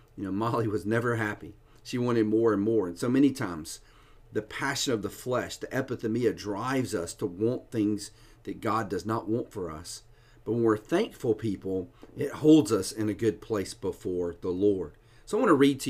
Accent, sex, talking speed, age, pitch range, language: American, male, 210 wpm, 40-59, 100-130 Hz, English